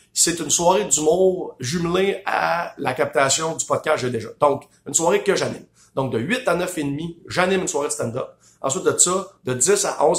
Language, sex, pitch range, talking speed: English, male, 120-160 Hz, 210 wpm